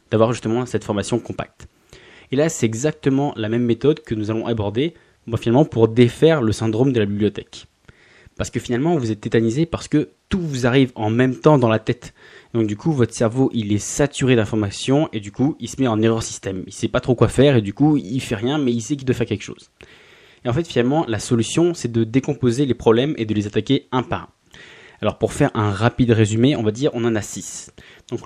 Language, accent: French, French